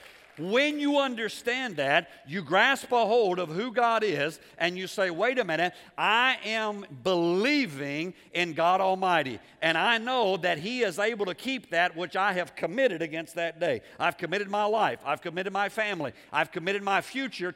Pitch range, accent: 160-225 Hz, American